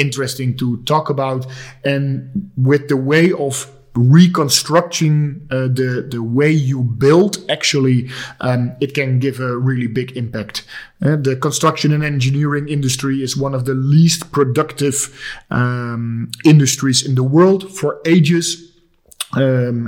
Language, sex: English, male